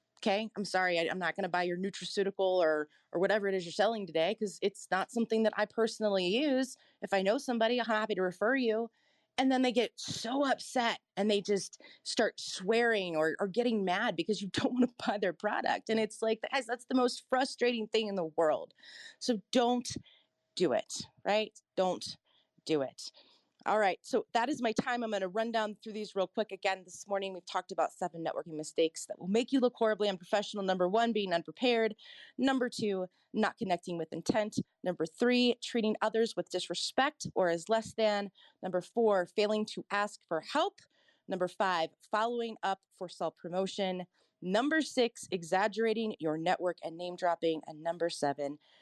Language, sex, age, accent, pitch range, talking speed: English, female, 30-49, American, 180-230 Hz, 190 wpm